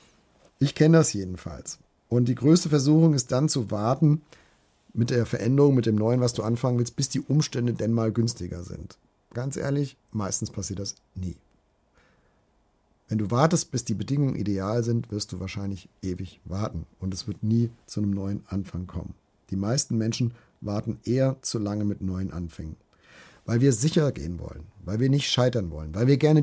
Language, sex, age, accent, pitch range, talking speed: German, male, 50-69, German, 100-130 Hz, 180 wpm